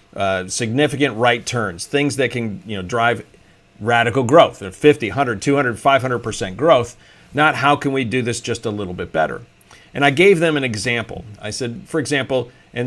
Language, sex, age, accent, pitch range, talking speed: English, male, 50-69, American, 110-145 Hz, 180 wpm